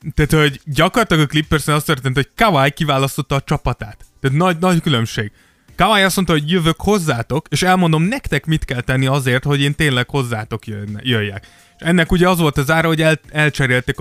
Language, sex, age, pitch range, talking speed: Hungarian, male, 20-39, 120-160 Hz, 190 wpm